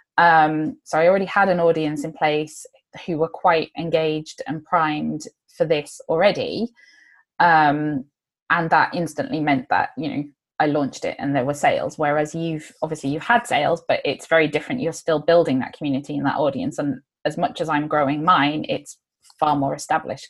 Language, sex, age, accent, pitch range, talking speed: English, female, 20-39, British, 150-200 Hz, 185 wpm